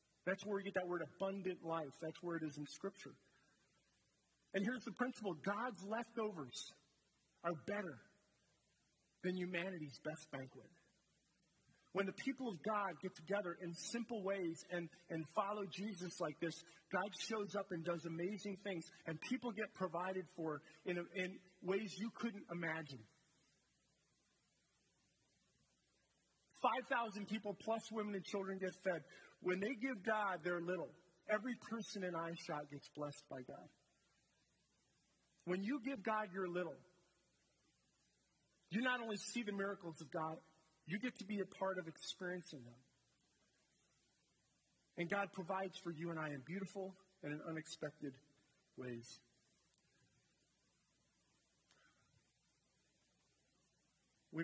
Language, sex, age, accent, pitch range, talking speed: English, male, 40-59, American, 165-205 Hz, 130 wpm